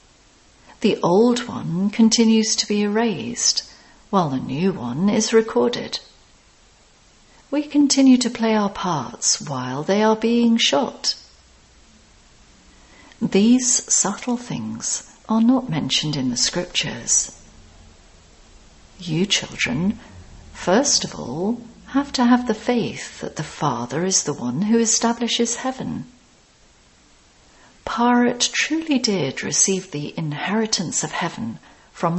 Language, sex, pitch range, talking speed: English, female, 155-240 Hz, 115 wpm